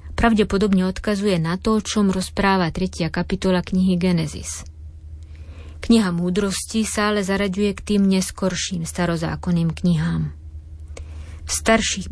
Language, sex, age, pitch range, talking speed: Slovak, female, 20-39, 155-195 Hz, 115 wpm